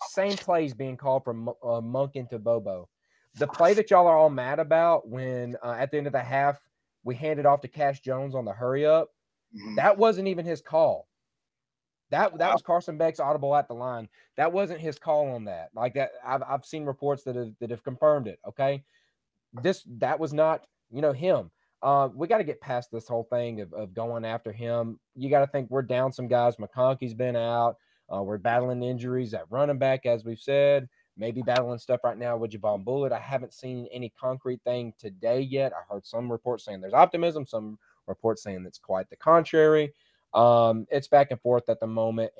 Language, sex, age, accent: English, male, 30-49, American